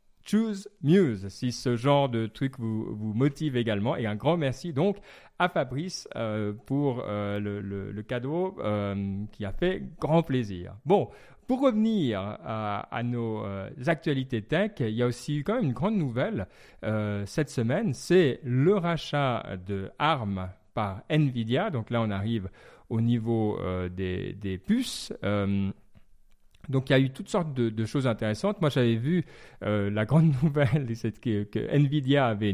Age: 40-59